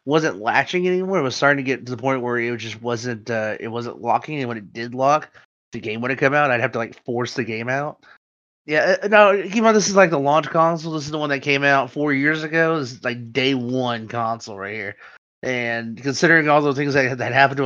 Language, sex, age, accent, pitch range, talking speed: English, male, 30-49, American, 120-150 Hz, 265 wpm